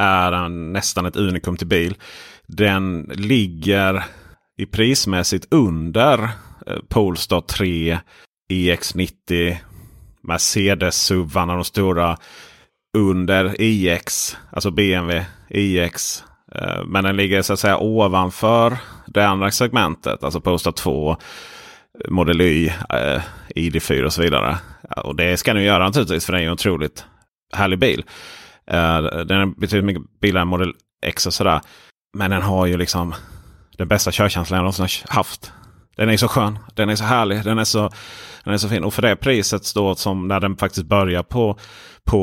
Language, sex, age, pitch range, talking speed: Swedish, male, 30-49, 85-100 Hz, 155 wpm